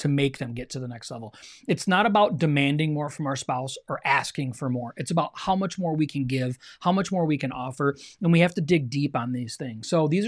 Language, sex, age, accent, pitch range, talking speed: English, male, 30-49, American, 145-195 Hz, 265 wpm